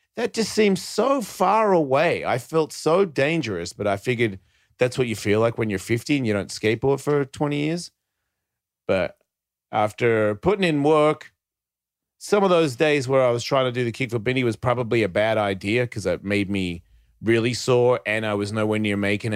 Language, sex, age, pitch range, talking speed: English, male, 30-49, 105-140 Hz, 200 wpm